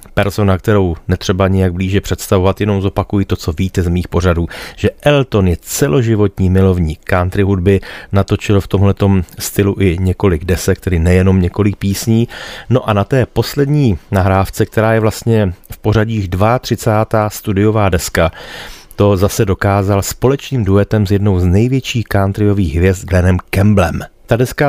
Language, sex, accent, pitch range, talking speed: Czech, male, native, 95-110 Hz, 150 wpm